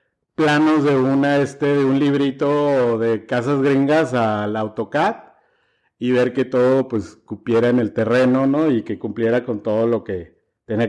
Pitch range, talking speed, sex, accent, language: 115-140 Hz, 165 wpm, male, Mexican, Spanish